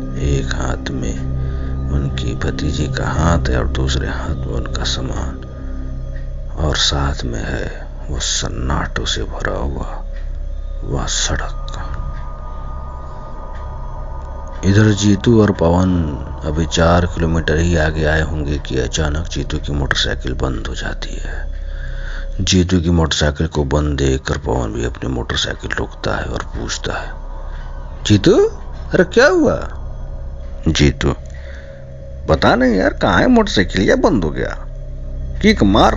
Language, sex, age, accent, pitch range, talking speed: Hindi, male, 50-69, native, 65-80 Hz, 125 wpm